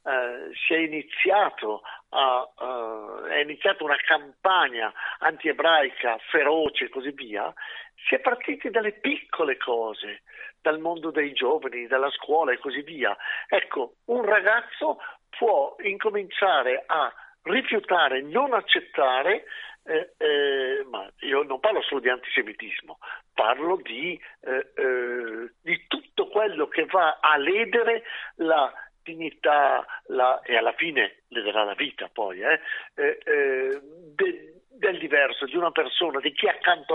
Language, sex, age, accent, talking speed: Italian, male, 50-69, native, 130 wpm